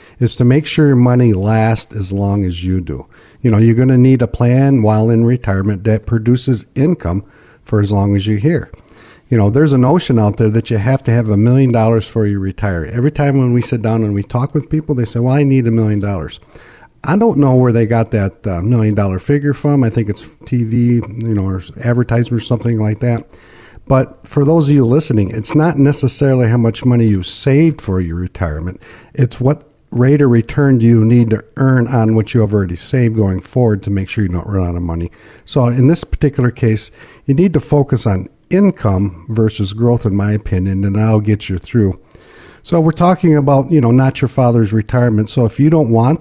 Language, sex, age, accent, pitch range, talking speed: English, male, 50-69, American, 105-130 Hz, 225 wpm